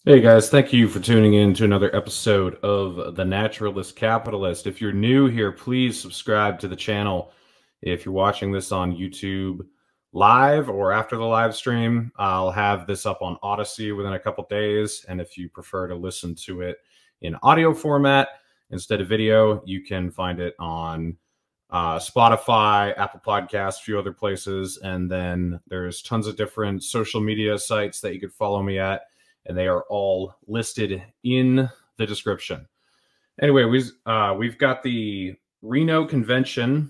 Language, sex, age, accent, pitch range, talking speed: English, male, 30-49, American, 95-115 Hz, 170 wpm